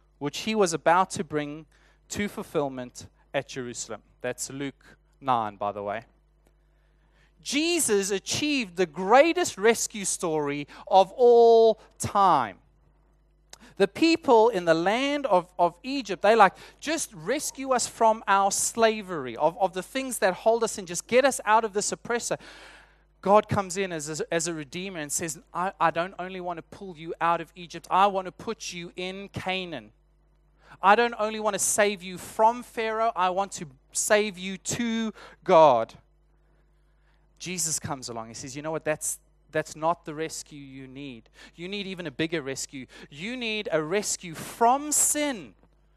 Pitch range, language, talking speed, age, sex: 160-220 Hz, English, 165 wpm, 30-49, male